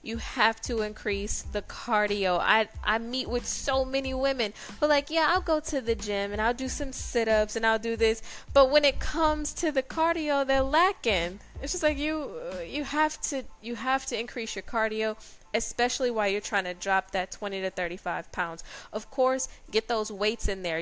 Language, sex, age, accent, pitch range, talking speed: English, female, 10-29, American, 190-235 Hz, 200 wpm